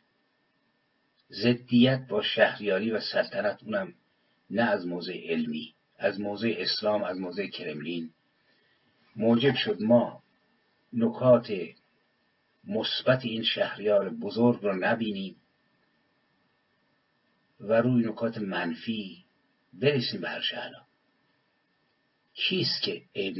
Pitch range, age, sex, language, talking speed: 105-120 Hz, 50-69, male, English, 90 wpm